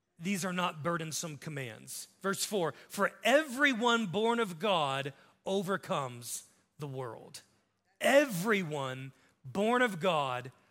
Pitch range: 160-220 Hz